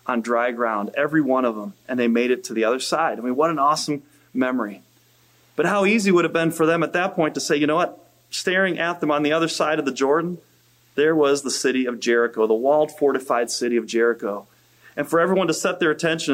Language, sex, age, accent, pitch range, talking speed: English, male, 30-49, American, 130-160 Hz, 245 wpm